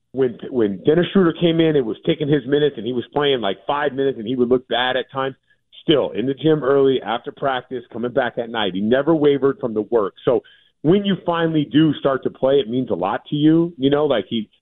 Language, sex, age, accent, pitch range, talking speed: English, male, 40-59, American, 115-160 Hz, 245 wpm